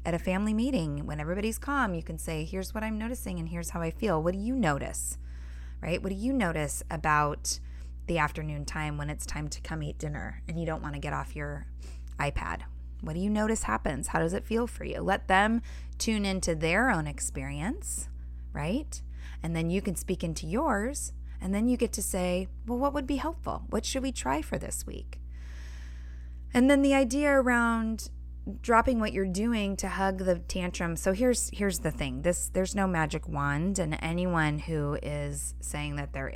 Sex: female